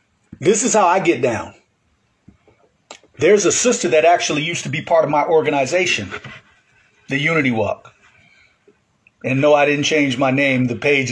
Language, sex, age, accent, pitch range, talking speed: English, male, 40-59, American, 115-160 Hz, 160 wpm